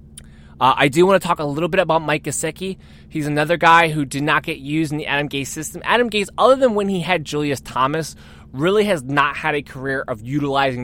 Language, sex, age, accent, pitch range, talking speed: English, male, 20-39, American, 135-175 Hz, 235 wpm